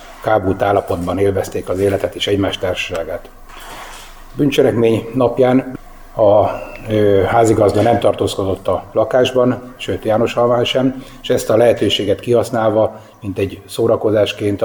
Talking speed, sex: 120 wpm, male